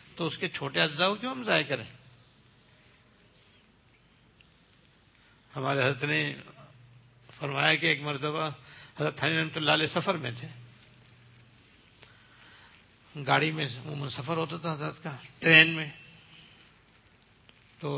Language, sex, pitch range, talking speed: English, male, 125-165 Hz, 115 wpm